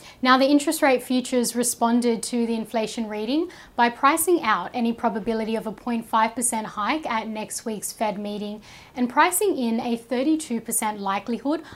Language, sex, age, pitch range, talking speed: English, female, 10-29, 210-245 Hz, 155 wpm